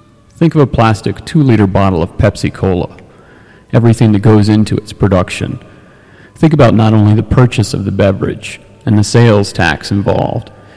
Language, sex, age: English, male, 40-59